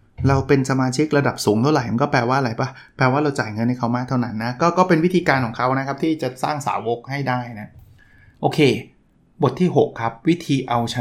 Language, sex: Thai, male